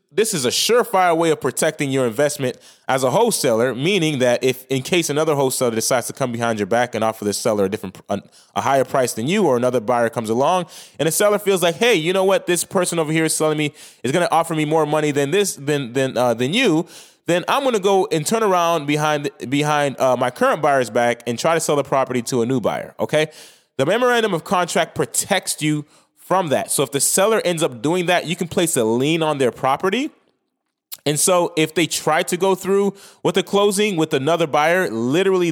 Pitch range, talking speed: 135-185 Hz, 230 wpm